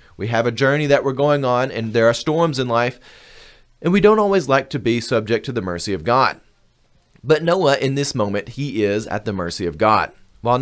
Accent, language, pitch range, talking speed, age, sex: American, English, 105-140 Hz, 225 wpm, 30-49, male